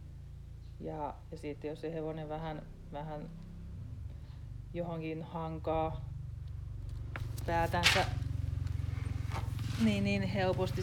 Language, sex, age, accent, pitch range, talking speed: Finnish, female, 30-49, native, 125-160 Hz, 80 wpm